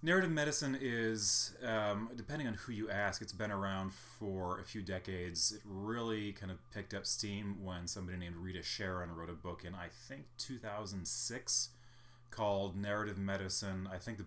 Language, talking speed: English, 175 wpm